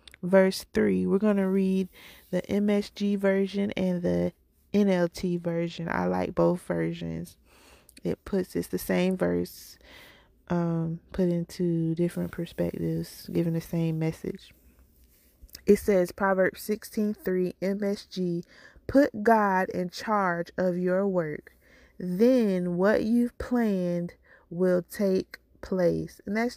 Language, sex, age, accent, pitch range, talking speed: English, female, 20-39, American, 160-195 Hz, 120 wpm